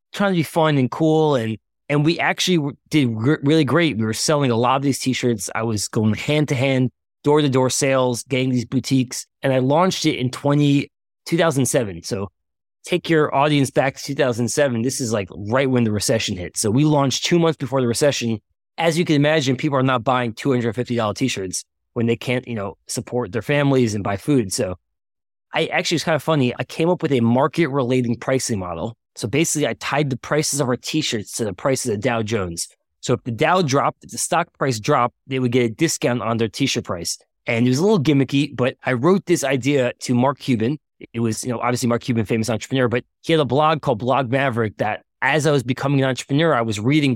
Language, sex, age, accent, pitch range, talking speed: English, male, 20-39, American, 120-150 Hz, 230 wpm